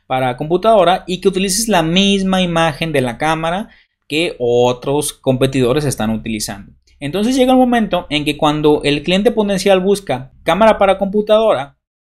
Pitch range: 140-210 Hz